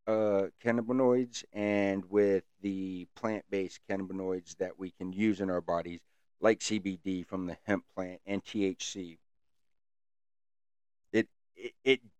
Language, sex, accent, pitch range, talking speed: English, male, American, 95-115 Hz, 120 wpm